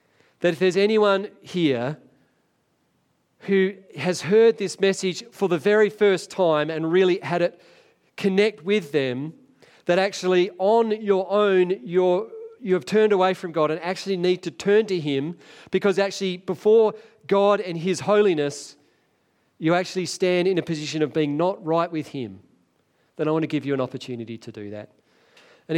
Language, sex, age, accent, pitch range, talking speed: English, male, 40-59, Australian, 140-190 Hz, 165 wpm